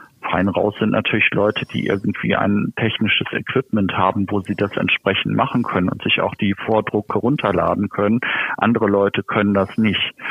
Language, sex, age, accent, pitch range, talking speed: German, male, 50-69, German, 100-110 Hz, 170 wpm